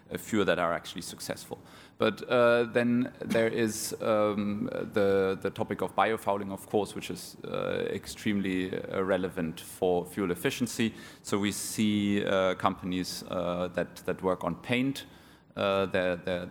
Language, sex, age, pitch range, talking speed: English, male, 30-49, 85-100 Hz, 150 wpm